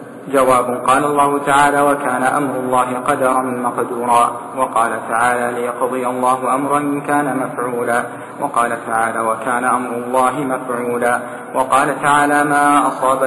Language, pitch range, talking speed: Arabic, 120-145 Hz, 120 wpm